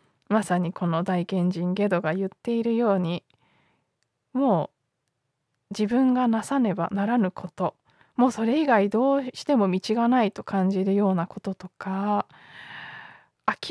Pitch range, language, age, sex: 185-245 Hz, Japanese, 20-39, female